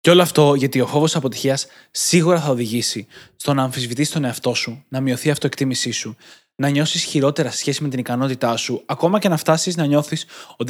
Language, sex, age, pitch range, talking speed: Greek, male, 20-39, 135-165 Hz, 210 wpm